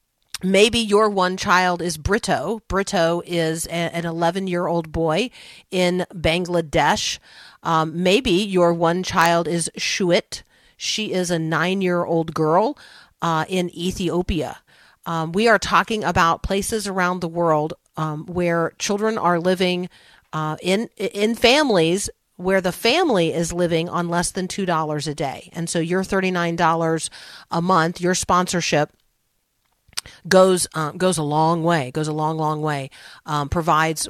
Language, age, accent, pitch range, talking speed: English, 40-59, American, 160-185 Hz, 140 wpm